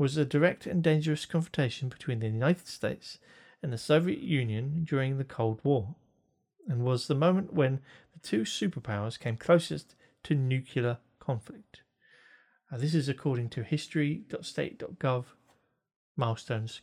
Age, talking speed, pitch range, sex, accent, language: 40-59, 135 wpm, 125-160 Hz, male, British, English